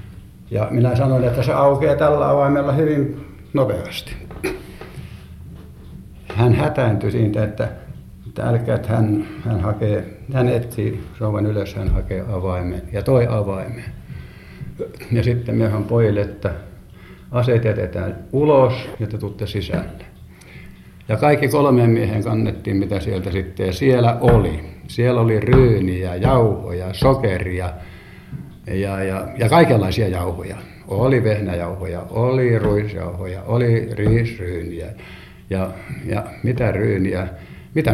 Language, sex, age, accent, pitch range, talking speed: Finnish, male, 60-79, native, 95-120 Hz, 110 wpm